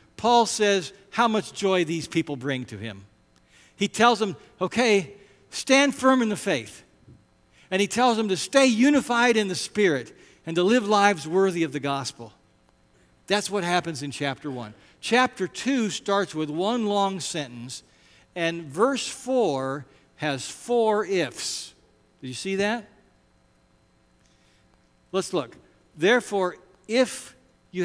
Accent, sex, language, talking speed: American, male, English, 140 wpm